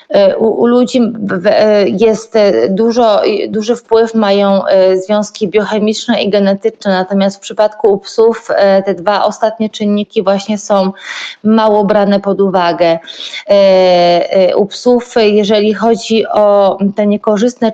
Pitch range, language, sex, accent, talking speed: 190-220 Hz, Polish, female, native, 115 wpm